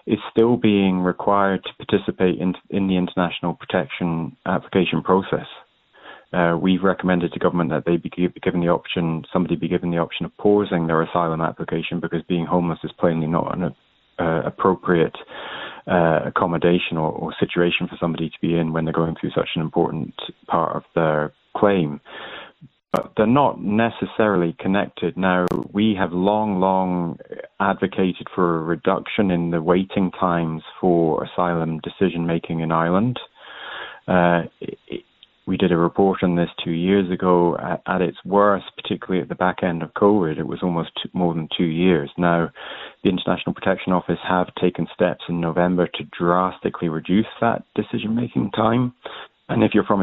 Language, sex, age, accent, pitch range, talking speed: English, male, 30-49, British, 85-95 Hz, 165 wpm